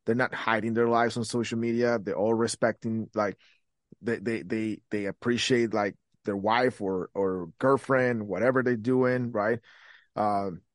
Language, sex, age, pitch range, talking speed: English, male, 30-49, 110-125 Hz, 155 wpm